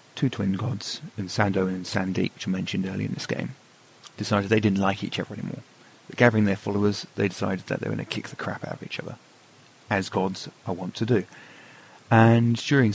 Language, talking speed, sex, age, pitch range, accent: English, 220 wpm, male, 30-49, 95-115 Hz, British